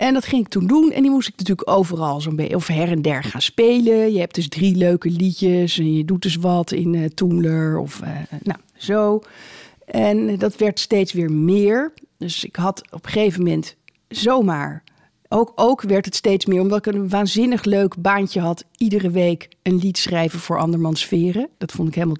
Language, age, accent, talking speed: Dutch, 50-69, Dutch, 205 wpm